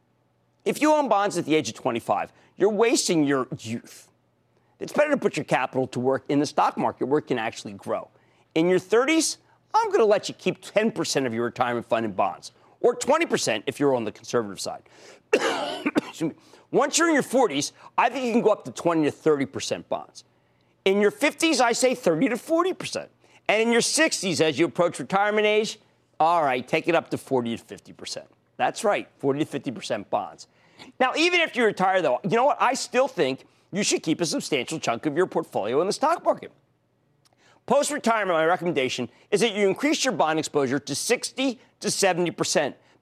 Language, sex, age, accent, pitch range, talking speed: English, male, 40-59, American, 155-250 Hz, 195 wpm